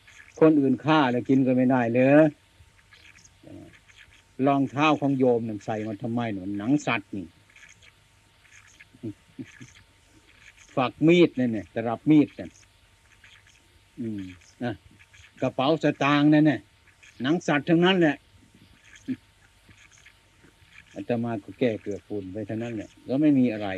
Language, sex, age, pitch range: Thai, male, 60-79, 100-140 Hz